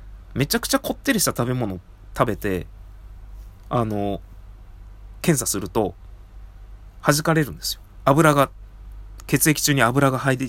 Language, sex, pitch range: Japanese, male, 95-145 Hz